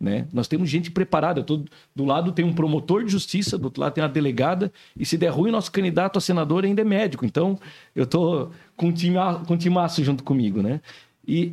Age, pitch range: 50-69, 150-190 Hz